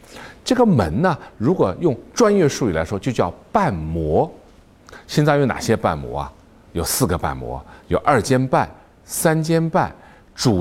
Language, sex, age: Chinese, male, 50-69